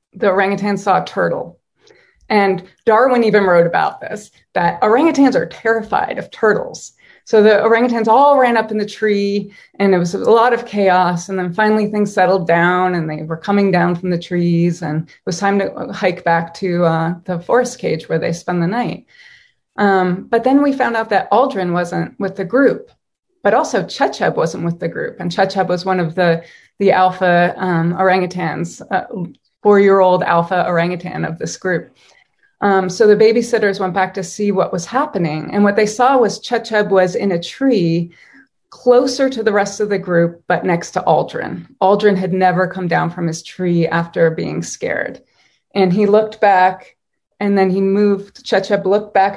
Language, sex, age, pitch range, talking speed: English, female, 30-49, 175-210 Hz, 185 wpm